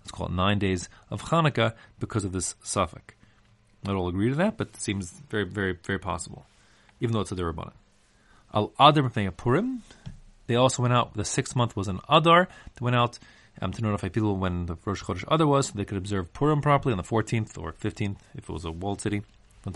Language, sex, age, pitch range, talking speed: English, male, 30-49, 95-120 Hz, 215 wpm